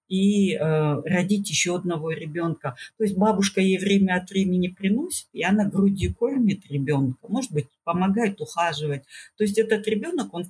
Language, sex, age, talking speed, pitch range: Russian, female, 50-69, 160 wpm, 160-205 Hz